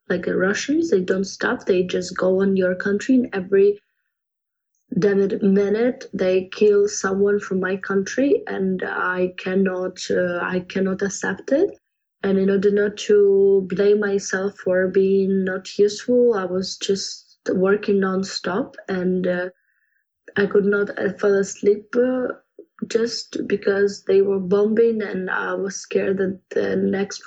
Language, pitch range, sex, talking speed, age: English, 190-215 Hz, female, 140 wpm, 20-39